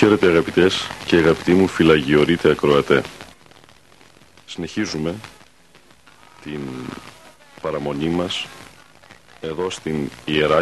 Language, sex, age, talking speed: Greek, male, 50-69, 80 wpm